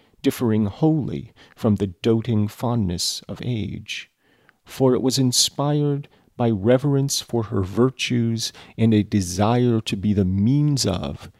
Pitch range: 100-125 Hz